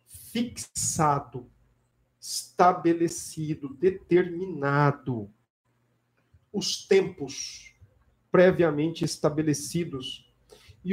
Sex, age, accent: male, 50-69, Brazilian